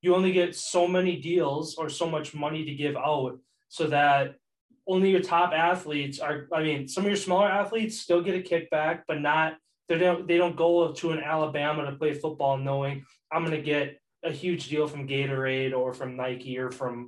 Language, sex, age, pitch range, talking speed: English, male, 20-39, 135-165 Hz, 205 wpm